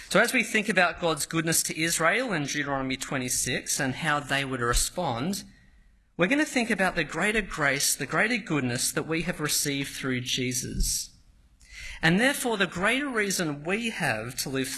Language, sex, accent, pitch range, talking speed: English, male, Australian, 130-200 Hz, 175 wpm